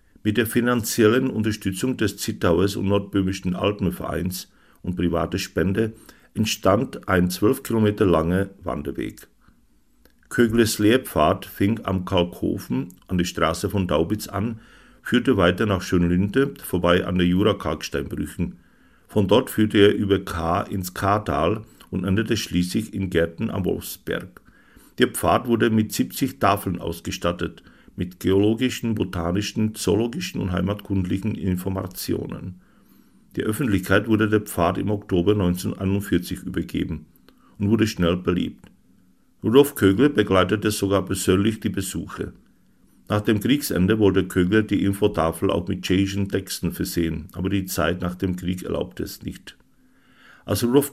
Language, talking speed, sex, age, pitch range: Czech, 130 wpm, male, 50-69, 90-105 Hz